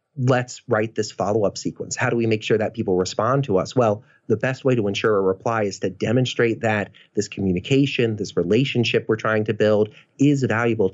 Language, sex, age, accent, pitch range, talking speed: English, male, 30-49, American, 100-130 Hz, 210 wpm